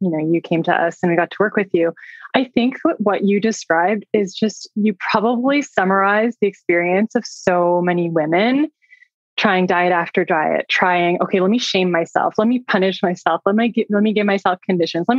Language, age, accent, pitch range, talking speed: English, 20-39, American, 180-225 Hz, 215 wpm